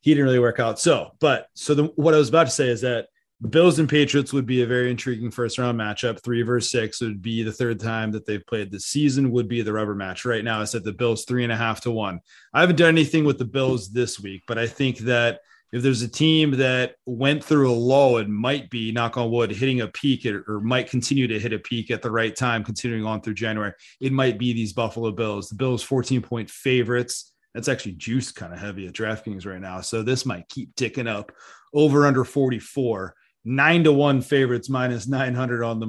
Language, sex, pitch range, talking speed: English, male, 110-135 Hz, 235 wpm